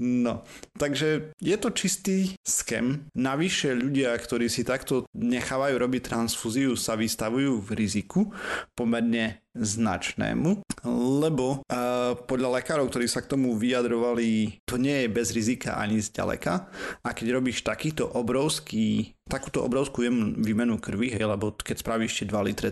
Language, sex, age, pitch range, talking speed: Slovak, male, 30-49, 110-130 Hz, 140 wpm